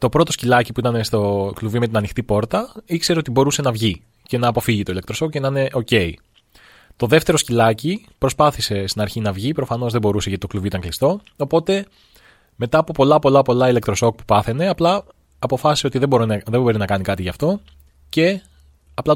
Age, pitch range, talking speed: 20-39, 100-140 Hz, 195 wpm